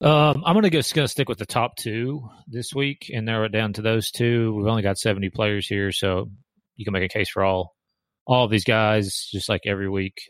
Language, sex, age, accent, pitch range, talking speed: English, male, 30-49, American, 95-115 Hz, 240 wpm